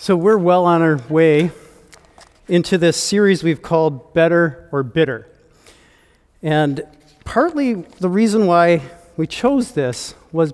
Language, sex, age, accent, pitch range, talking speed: English, male, 40-59, American, 150-190 Hz, 130 wpm